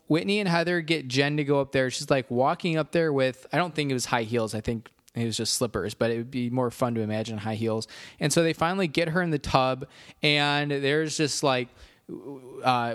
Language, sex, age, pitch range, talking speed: English, male, 20-39, 135-170 Hz, 240 wpm